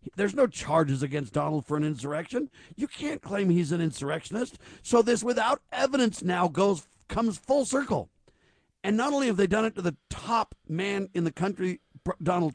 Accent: American